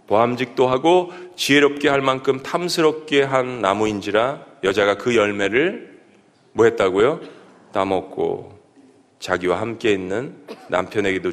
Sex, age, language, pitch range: male, 40-59, Korean, 130-185 Hz